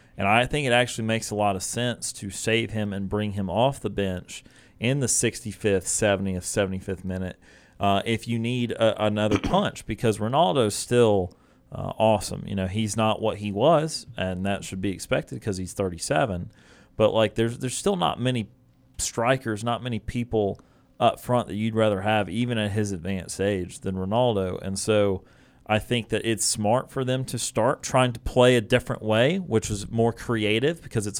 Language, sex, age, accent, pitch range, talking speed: English, male, 30-49, American, 100-120 Hz, 190 wpm